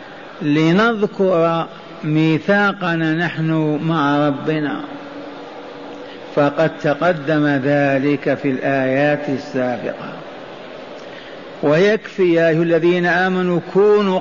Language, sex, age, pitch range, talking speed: Arabic, male, 50-69, 160-175 Hz, 70 wpm